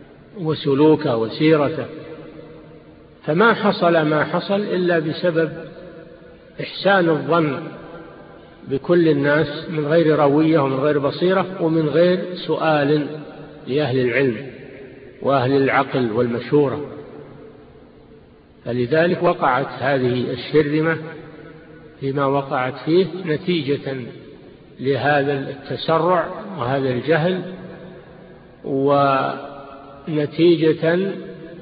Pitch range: 140-170 Hz